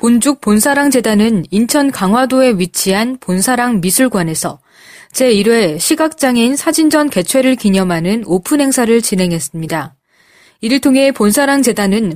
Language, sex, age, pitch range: Korean, female, 20-39, 195-280 Hz